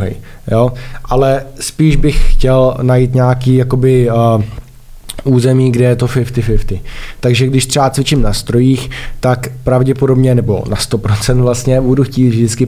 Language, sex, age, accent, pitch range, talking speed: Czech, male, 20-39, native, 115-130 Hz, 135 wpm